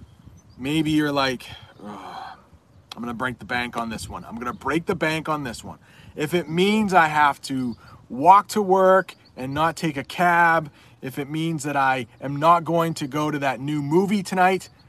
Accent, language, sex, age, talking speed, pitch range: American, English, male, 30-49, 195 wpm, 120-165 Hz